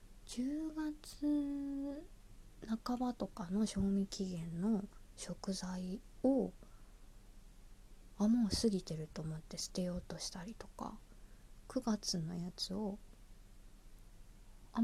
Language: Japanese